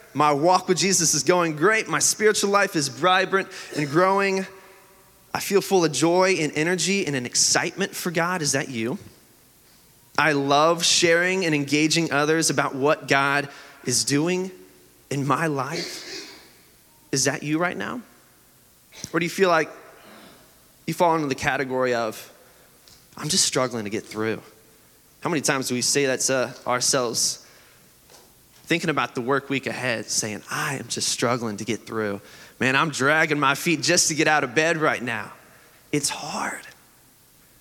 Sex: male